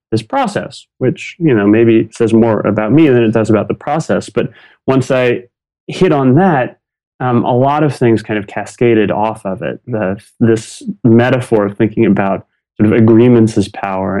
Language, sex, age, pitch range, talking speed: English, male, 30-49, 100-120 Hz, 185 wpm